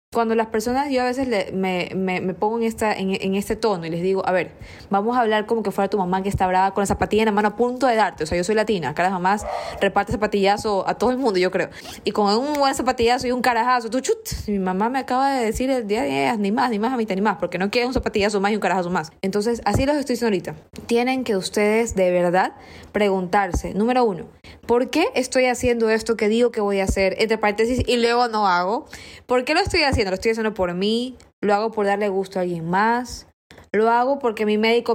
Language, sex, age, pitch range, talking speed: Spanish, female, 20-39, 195-235 Hz, 260 wpm